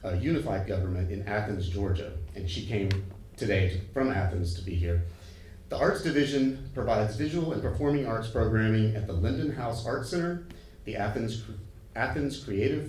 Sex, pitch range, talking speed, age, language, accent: male, 95-120 Hz, 165 wpm, 30-49, English, American